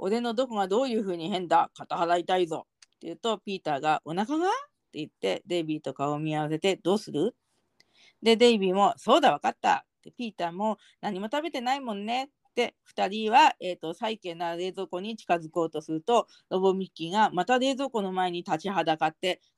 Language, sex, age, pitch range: Japanese, female, 40-59, 170-225 Hz